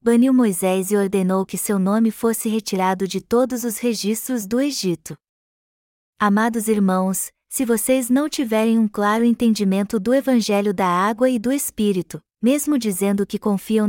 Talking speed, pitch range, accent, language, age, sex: 150 wpm, 190-230 Hz, Brazilian, Portuguese, 20-39, female